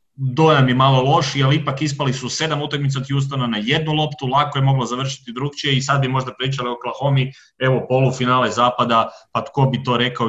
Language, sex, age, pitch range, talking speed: Croatian, male, 30-49, 105-135 Hz, 200 wpm